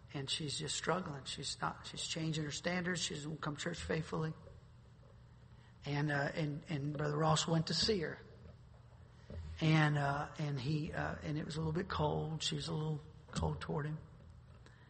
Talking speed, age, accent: 185 wpm, 40-59, American